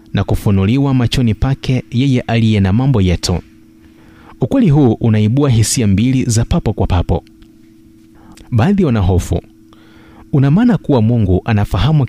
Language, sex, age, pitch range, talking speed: Swahili, male, 30-49, 100-125 Hz, 120 wpm